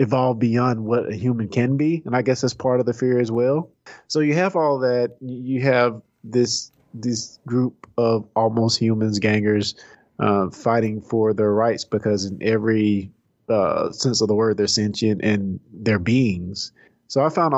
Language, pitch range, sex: English, 100-125 Hz, male